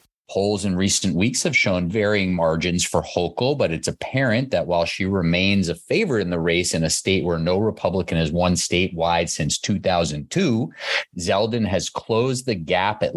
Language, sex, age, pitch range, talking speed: English, male, 30-49, 85-115 Hz, 180 wpm